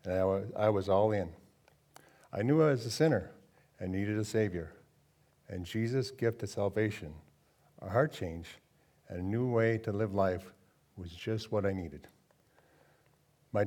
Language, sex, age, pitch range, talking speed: English, male, 50-69, 95-130 Hz, 165 wpm